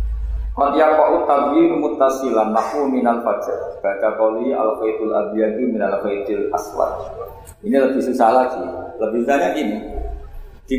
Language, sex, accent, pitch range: Indonesian, male, native, 85-135 Hz